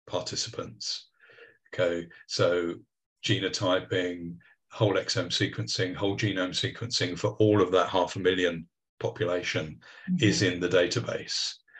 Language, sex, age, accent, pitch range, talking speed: English, male, 40-59, British, 90-115 Hz, 110 wpm